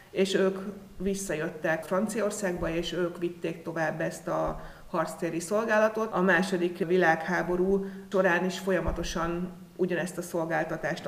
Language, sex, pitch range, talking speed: Hungarian, female, 170-200 Hz, 115 wpm